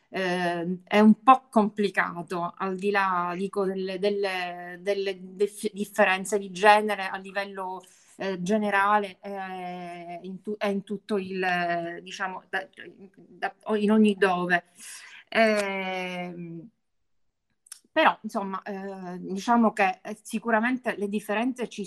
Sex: female